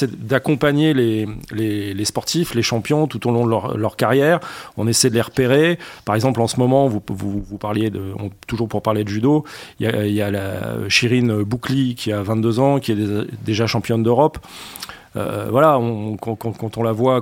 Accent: French